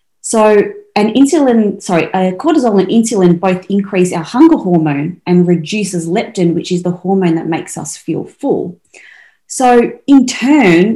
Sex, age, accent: female, 30-49, Australian